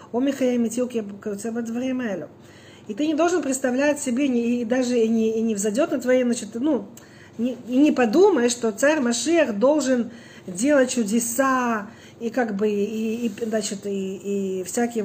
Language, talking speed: Russian, 140 wpm